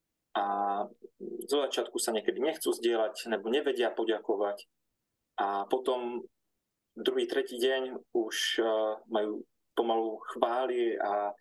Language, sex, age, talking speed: Slovak, male, 20-39, 105 wpm